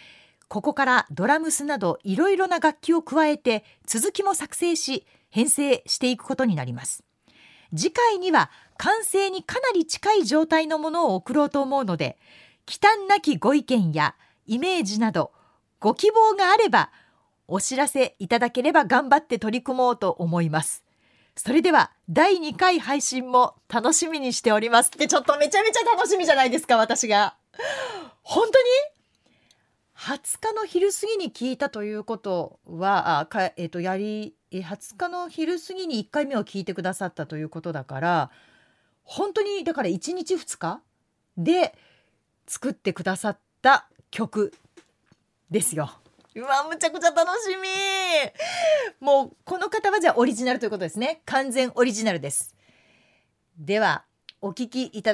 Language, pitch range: Japanese, 210-340 Hz